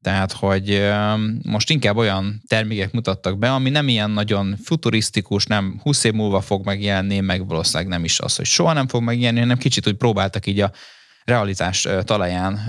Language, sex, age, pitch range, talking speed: Hungarian, male, 20-39, 95-110 Hz, 170 wpm